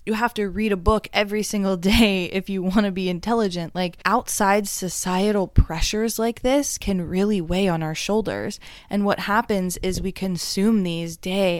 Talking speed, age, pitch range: 180 wpm, 20-39, 180-215 Hz